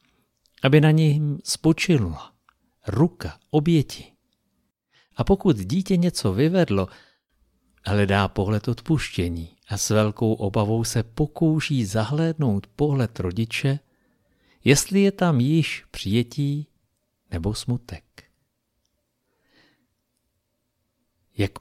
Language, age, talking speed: Czech, 50-69, 90 wpm